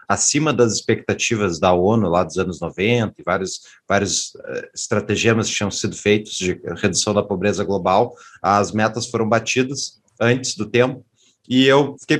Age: 30-49